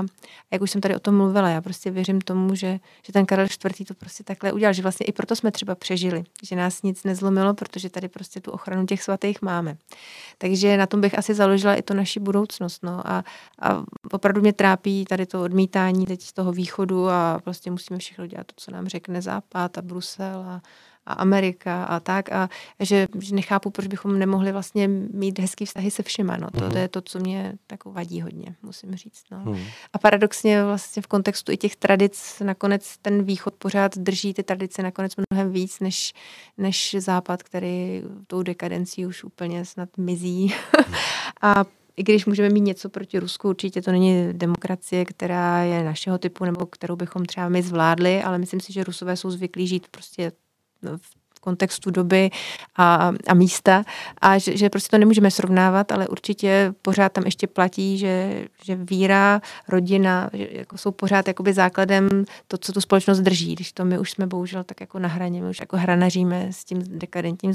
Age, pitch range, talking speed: 30-49, 180-200 Hz, 190 wpm